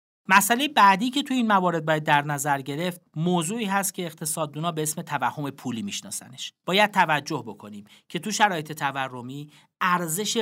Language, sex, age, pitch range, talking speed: Persian, male, 40-59, 145-200 Hz, 155 wpm